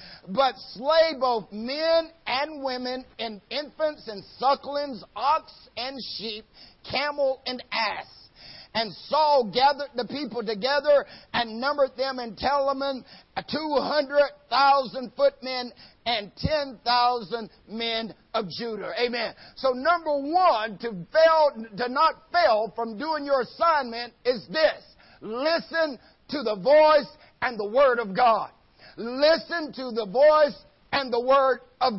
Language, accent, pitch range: English, American, 245-305 Hz